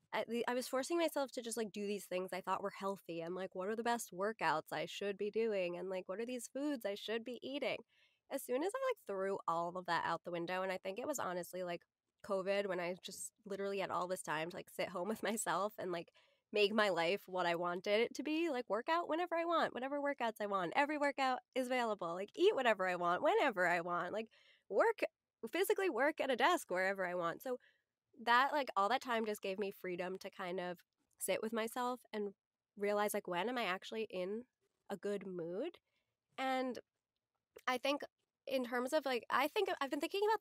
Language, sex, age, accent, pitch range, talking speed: English, female, 20-39, American, 185-250 Hz, 225 wpm